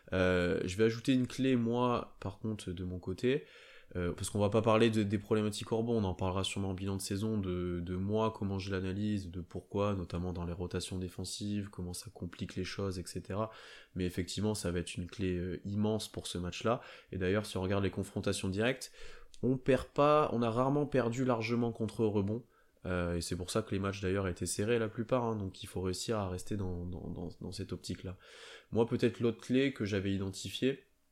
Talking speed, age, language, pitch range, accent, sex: 220 wpm, 20-39, French, 95-110 Hz, French, male